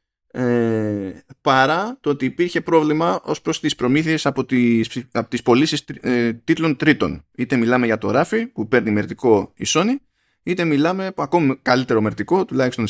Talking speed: 165 wpm